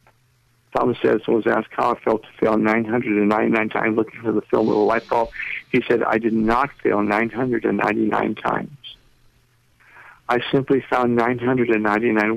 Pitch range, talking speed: 115-140 Hz, 155 wpm